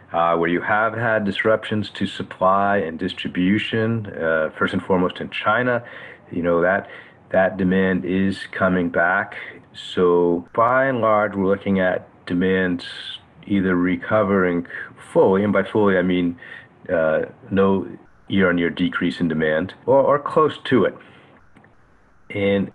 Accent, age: American, 40-59